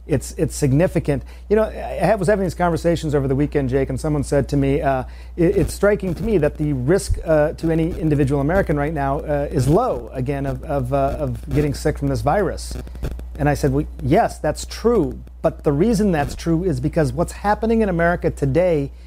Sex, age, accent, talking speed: male, 40-59, American, 215 wpm